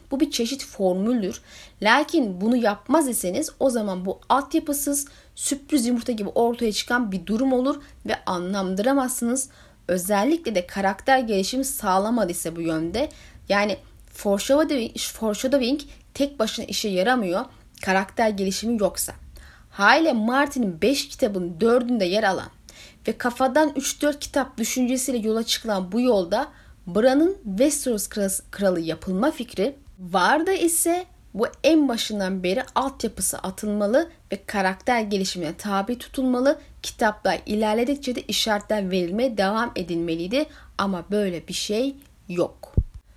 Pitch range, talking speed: 200-280 Hz, 120 wpm